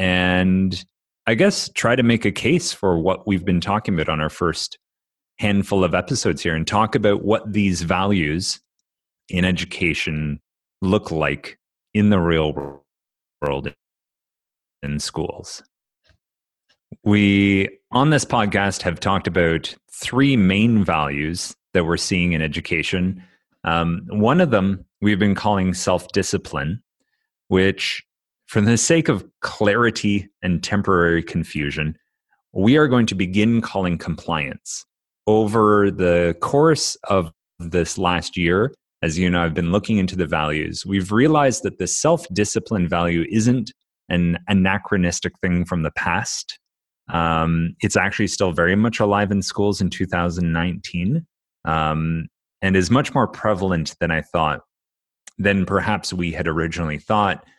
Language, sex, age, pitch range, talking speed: English, male, 30-49, 85-105 Hz, 135 wpm